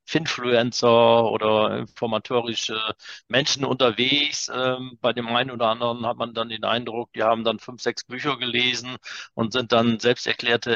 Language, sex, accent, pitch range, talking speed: German, male, German, 115-125 Hz, 150 wpm